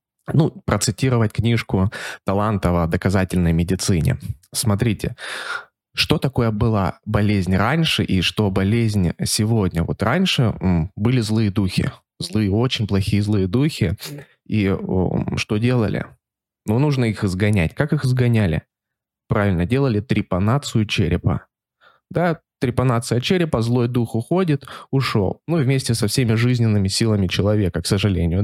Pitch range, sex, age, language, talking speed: 100-130 Hz, male, 20-39, Russian, 120 wpm